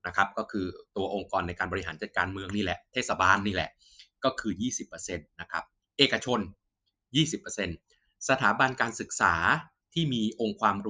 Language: Thai